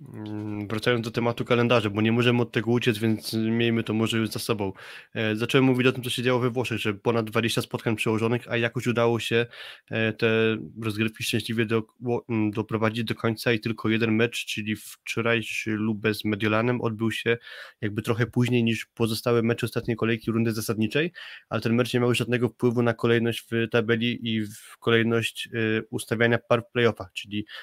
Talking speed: 180 wpm